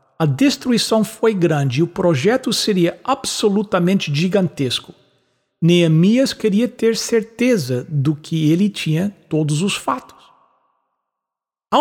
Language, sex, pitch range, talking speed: English, male, 150-215 Hz, 110 wpm